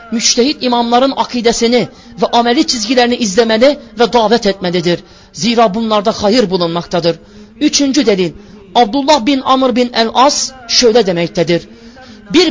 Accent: native